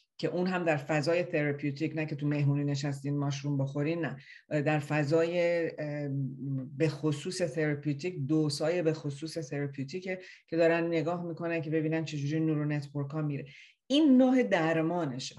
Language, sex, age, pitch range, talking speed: Persian, female, 40-59, 150-170 Hz, 140 wpm